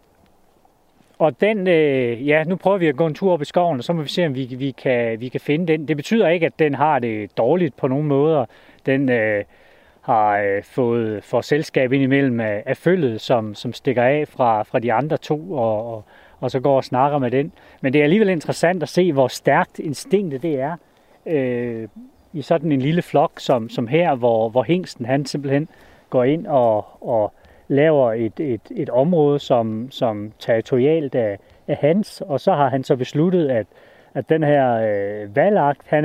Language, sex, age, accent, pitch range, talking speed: Danish, male, 30-49, native, 125-160 Hz, 200 wpm